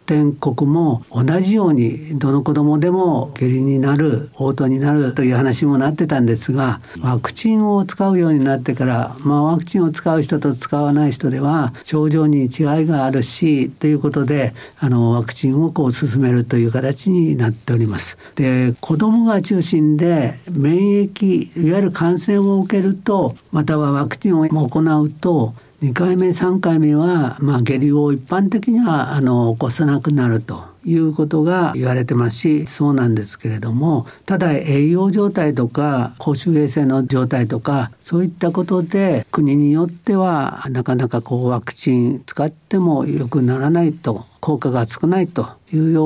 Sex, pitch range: male, 130-165 Hz